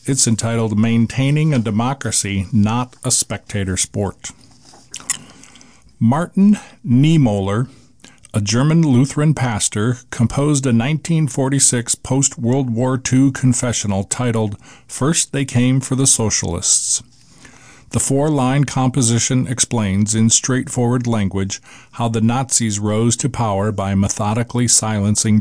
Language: English